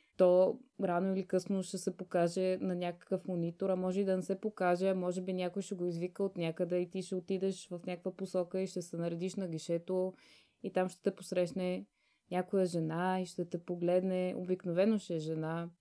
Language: Bulgarian